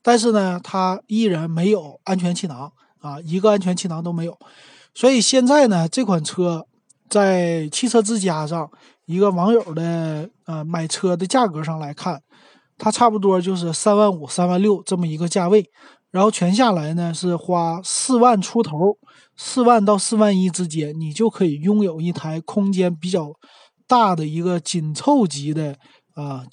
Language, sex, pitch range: Chinese, male, 165-210 Hz